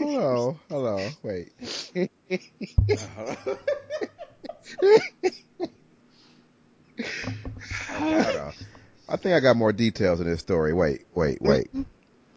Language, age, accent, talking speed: English, 30-49, American, 80 wpm